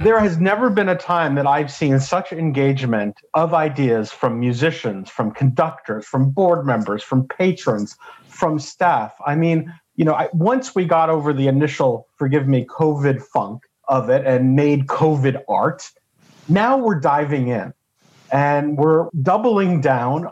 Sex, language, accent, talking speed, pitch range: male, English, American, 155 wpm, 140-185 Hz